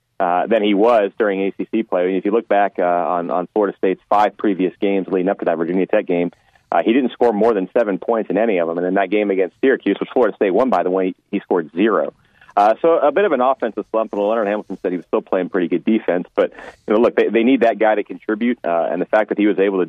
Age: 30-49